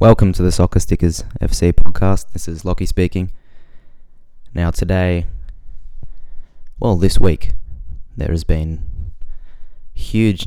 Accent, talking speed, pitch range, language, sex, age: Australian, 115 wpm, 80-90 Hz, English, male, 20-39